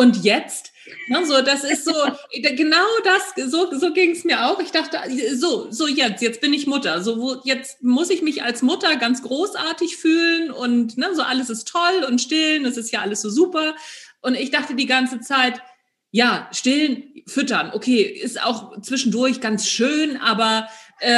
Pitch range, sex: 235-305 Hz, female